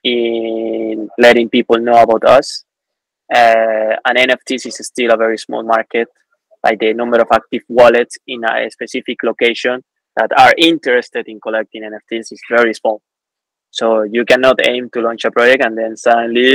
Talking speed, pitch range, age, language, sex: 165 wpm, 110-125 Hz, 20-39, English, male